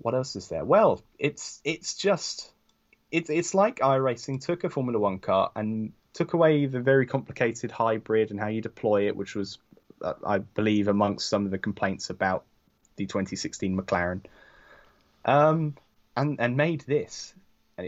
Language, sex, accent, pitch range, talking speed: English, male, British, 100-135 Hz, 160 wpm